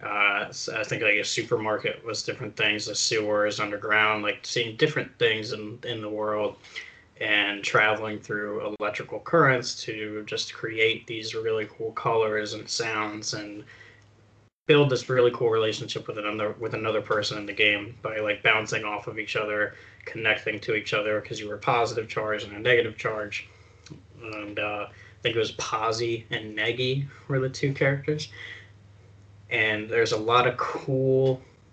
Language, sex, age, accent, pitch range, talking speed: English, male, 10-29, American, 105-130 Hz, 170 wpm